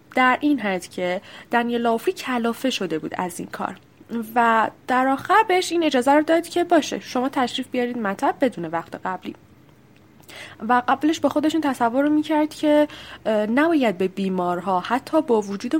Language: English